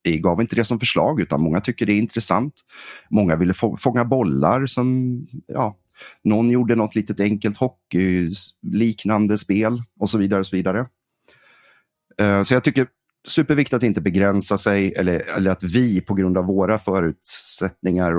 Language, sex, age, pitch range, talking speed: Swedish, male, 30-49, 85-105 Hz, 160 wpm